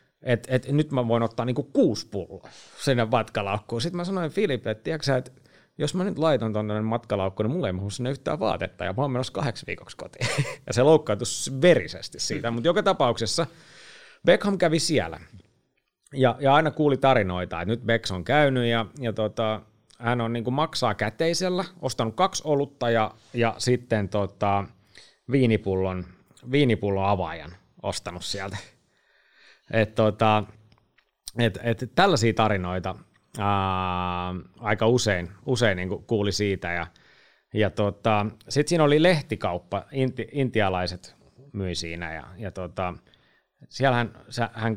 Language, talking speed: Finnish, 145 wpm